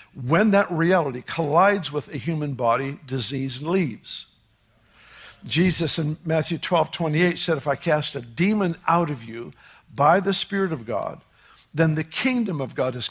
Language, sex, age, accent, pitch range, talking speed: English, male, 60-79, American, 130-175 Hz, 160 wpm